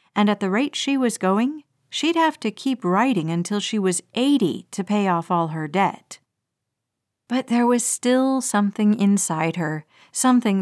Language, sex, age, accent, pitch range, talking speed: English, female, 50-69, American, 180-245 Hz, 170 wpm